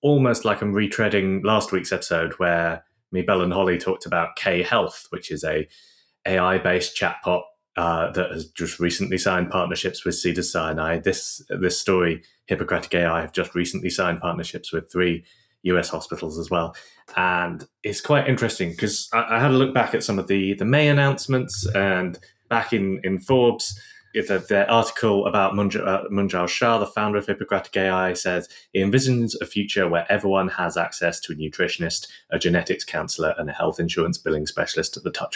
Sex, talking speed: male, 180 wpm